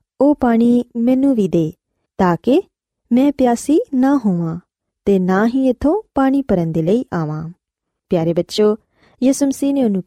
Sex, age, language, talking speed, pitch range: female, 20-39, Punjabi, 155 wpm, 180-260 Hz